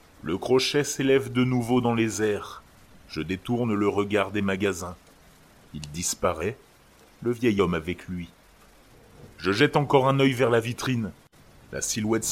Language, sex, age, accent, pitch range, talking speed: French, male, 30-49, French, 95-135 Hz, 150 wpm